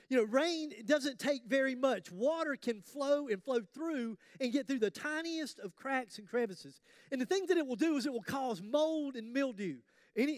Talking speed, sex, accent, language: 220 wpm, male, American, English